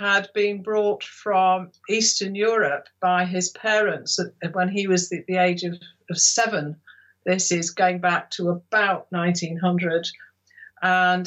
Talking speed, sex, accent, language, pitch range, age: 130 wpm, female, British, English, 165-185 Hz, 50-69